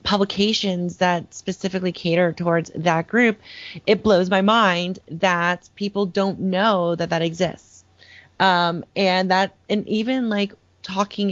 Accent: American